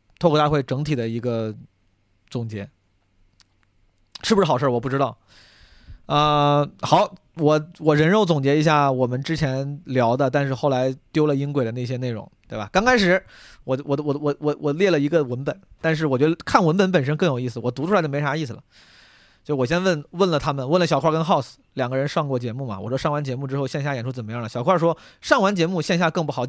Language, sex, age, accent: Chinese, male, 20-39, native